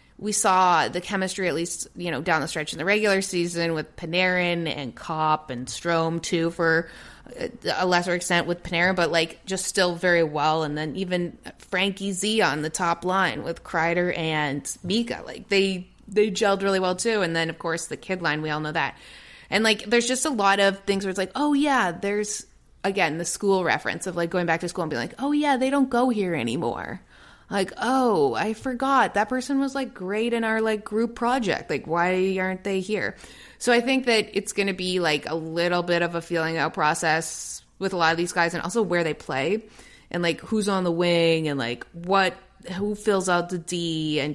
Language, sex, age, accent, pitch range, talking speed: English, female, 20-39, American, 165-210 Hz, 220 wpm